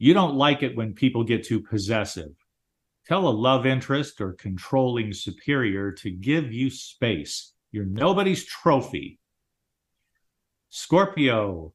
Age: 50-69